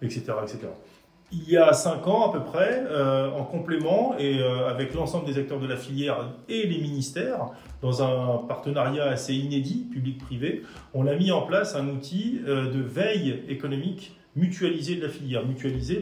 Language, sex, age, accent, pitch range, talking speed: French, male, 40-59, French, 130-165 Hz, 175 wpm